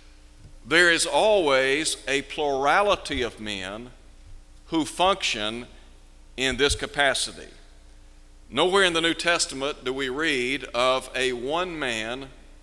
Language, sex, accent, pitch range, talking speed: English, male, American, 100-155 Hz, 110 wpm